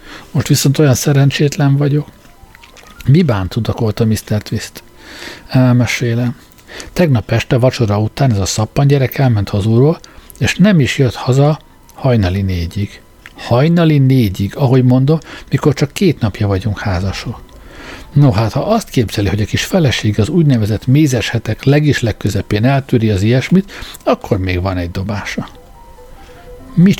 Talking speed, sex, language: 135 wpm, male, Hungarian